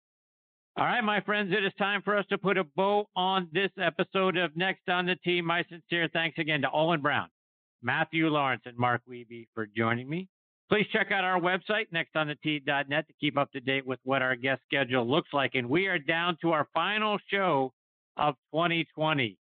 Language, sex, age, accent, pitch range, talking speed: English, male, 50-69, American, 130-175 Hz, 195 wpm